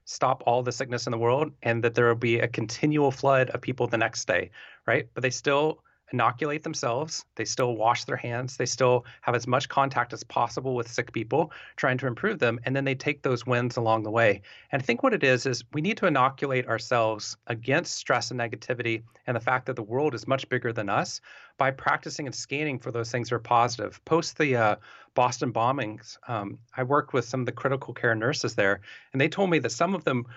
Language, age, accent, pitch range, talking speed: English, 30-49, American, 120-145 Hz, 230 wpm